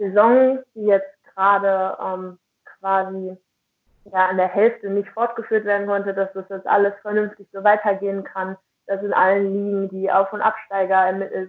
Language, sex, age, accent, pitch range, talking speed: German, female, 20-39, German, 185-205 Hz, 160 wpm